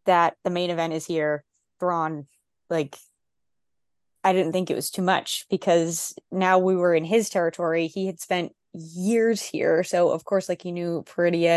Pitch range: 165-190 Hz